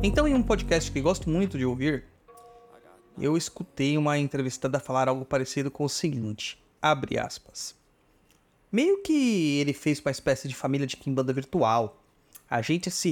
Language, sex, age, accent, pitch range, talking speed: Portuguese, male, 30-49, Brazilian, 135-190 Hz, 160 wpm